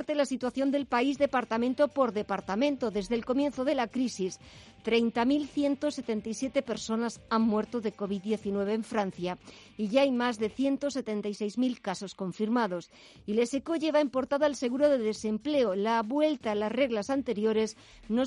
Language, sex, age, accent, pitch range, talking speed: Spanish, female, 50-69, Spanish, 215-275 Hz, 150 wpm